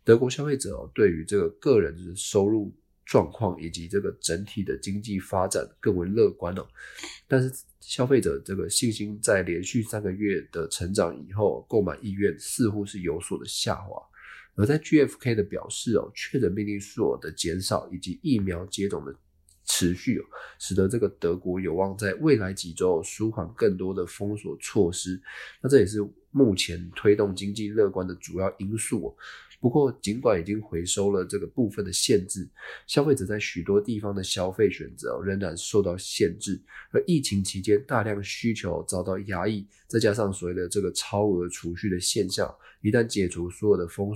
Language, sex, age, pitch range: Chinese, male, 20-39, 90-105 Hz